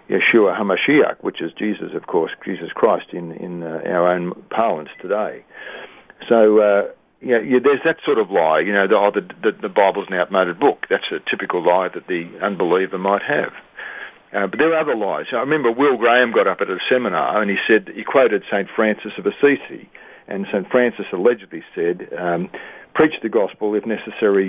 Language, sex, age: English, male, 50-69